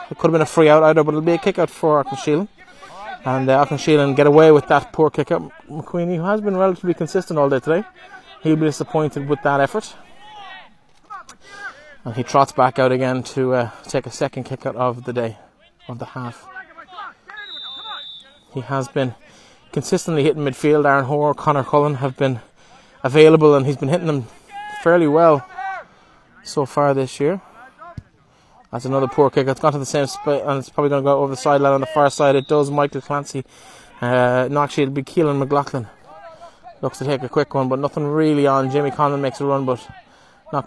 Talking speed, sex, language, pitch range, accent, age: 195 wpm, male, English, 135-160 Hz, Irish, 20-39